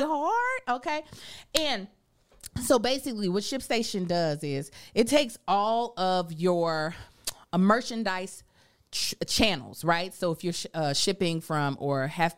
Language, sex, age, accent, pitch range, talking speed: English, female, 30-49, American, 170-230 Hz, 140 wpm